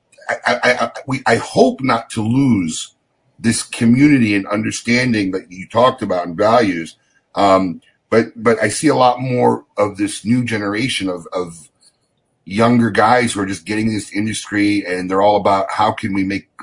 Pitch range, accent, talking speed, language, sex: 100-125 Hz, American, 175 wpm, English, male